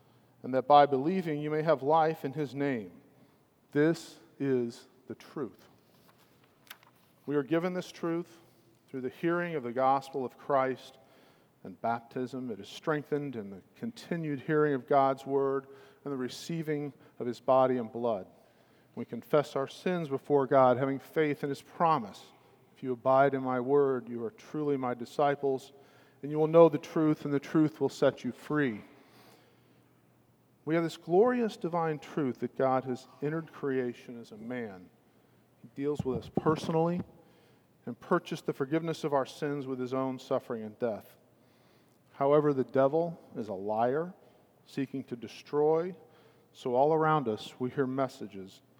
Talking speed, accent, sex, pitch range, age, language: 160 wpm, American, male, 130-155 Hz, 50-69, English